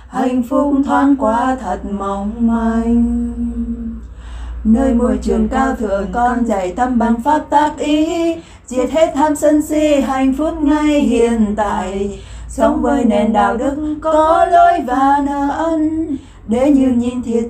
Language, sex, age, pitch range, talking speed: Vietnamese, female, 20-39, 225-285 Hz, 145 wpm